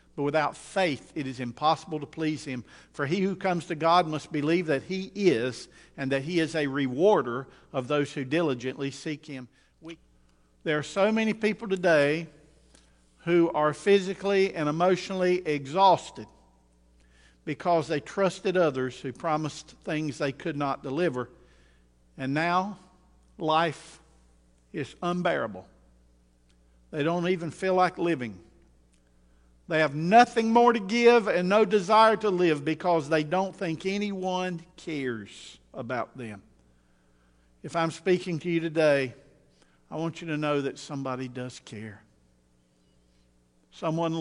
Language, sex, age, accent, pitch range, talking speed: English, male, 50-69, American, 105-175 Hz, 135 wpm